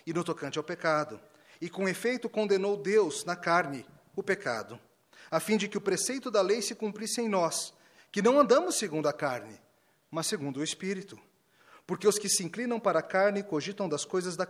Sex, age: male, 40-59